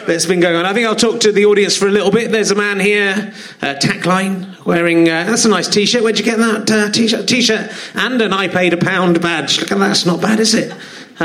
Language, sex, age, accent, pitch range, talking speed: English, male, 30-49, British, 180-225 Hz, 265 wpm